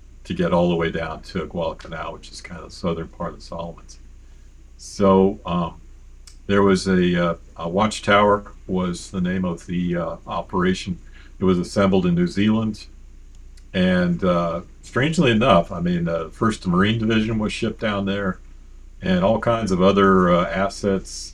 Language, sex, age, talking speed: English, male, 50-69, 170 wpm